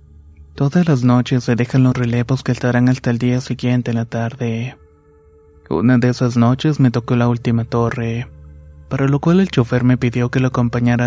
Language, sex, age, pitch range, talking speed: Spanish, male, 20-39, 115-125 Hz, 190 wpm